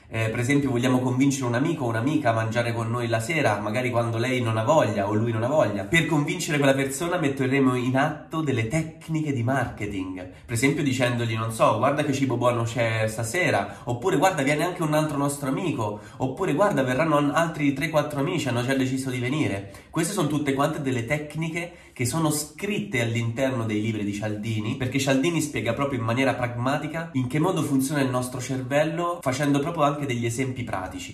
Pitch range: 120-145 Hz